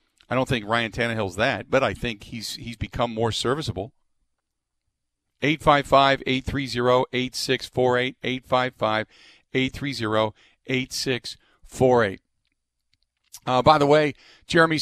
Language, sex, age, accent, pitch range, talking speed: English, male, 50-69, American, 115-140 Hz, 85 wpm